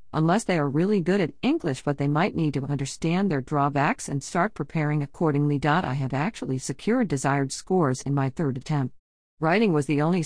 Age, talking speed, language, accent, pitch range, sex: 50-69, 195 wpm, English, American, 140-185 Hz, female